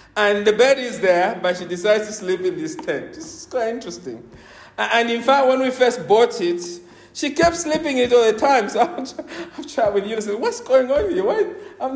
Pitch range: 155-245 Hz